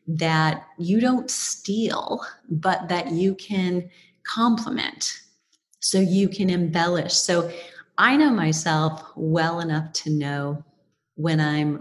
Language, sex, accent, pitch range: English, female, American, 155-190 Hz